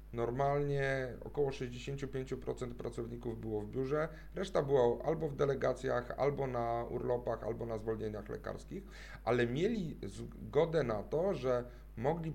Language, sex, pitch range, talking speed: Polish, male, 115-150 Hz, 125 wpm